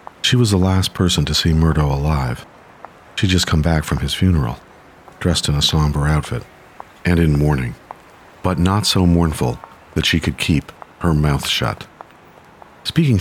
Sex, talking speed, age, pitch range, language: male, 165 wpm, 50-69, 75-95 Hz, English